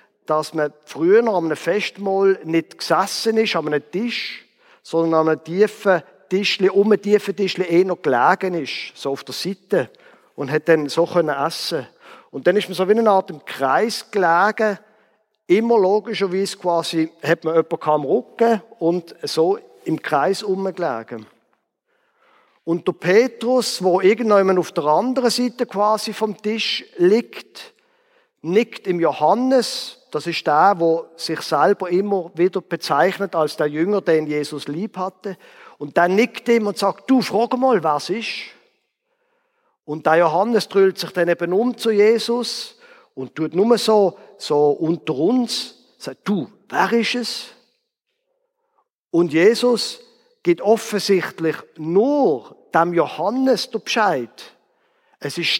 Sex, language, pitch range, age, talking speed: male, German, 170-235 Hz, 50-69, 145 wpm